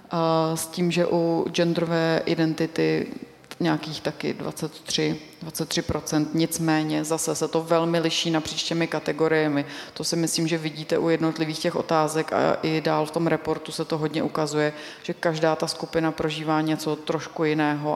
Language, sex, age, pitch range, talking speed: Czech, female, 30-49, 155-170 Hz, 155 wpm